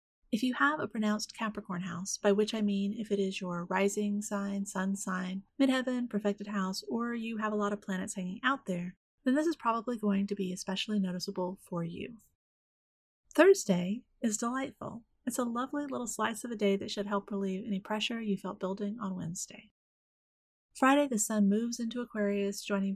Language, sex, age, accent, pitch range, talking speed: English, female, 30-49, American, 195-235 Hz, 190 wpm